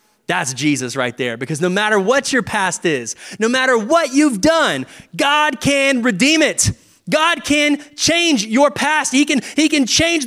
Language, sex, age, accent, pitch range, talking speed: English, male, 20-39, American, 215-290 Hz, 175 wpm